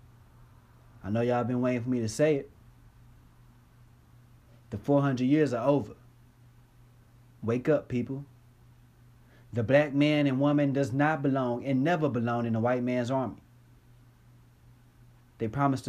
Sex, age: male, 30-49